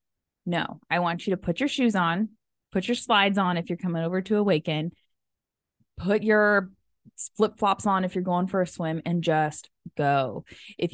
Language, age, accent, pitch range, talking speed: English, 20-39, American, 165-195 Hz, 180 wpm